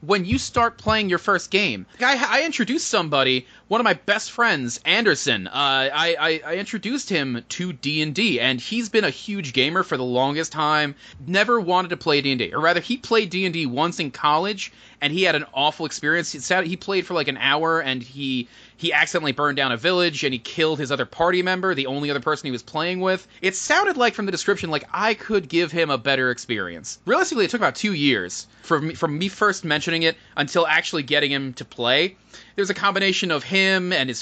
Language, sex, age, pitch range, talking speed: English, male, 30-49, 140-190 Hz, 215 wpm